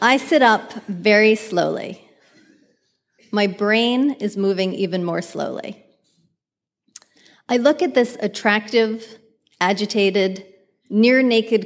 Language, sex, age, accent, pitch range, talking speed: English, female, 30-49, American, 200-265 Hz, 100 wpm